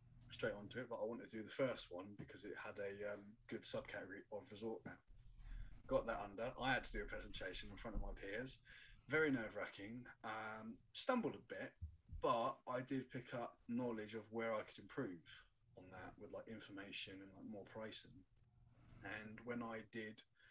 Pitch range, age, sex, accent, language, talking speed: 110-125 Hz, 20-39, male, British, English, 190 wpm